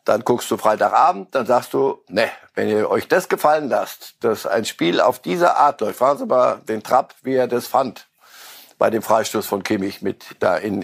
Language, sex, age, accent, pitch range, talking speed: German, male, 60-79, German, 130-180 Hz, 210 wpm